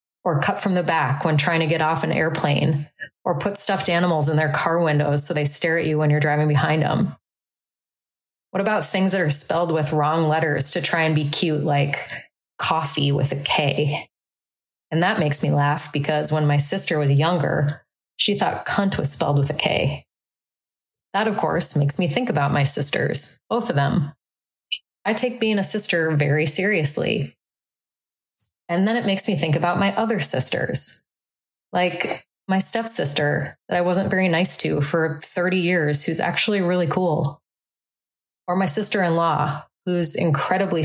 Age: 20-39